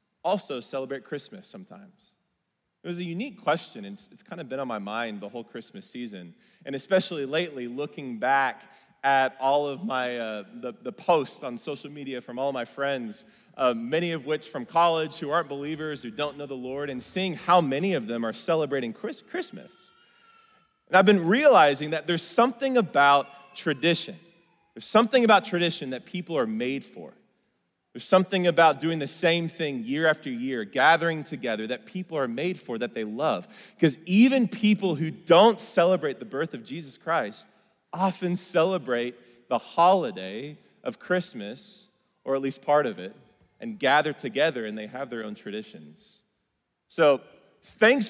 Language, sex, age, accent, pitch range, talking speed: English, male, 30-49, American, 140-195 Hz, 170 wpm